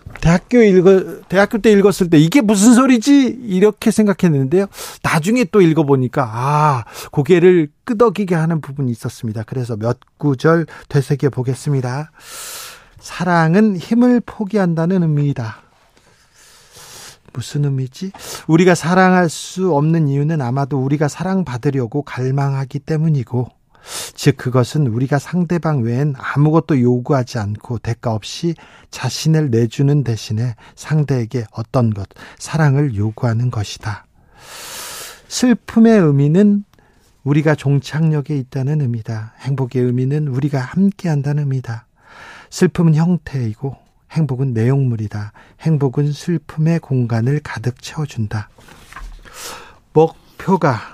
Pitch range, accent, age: 125-175 Hz, native, 40-59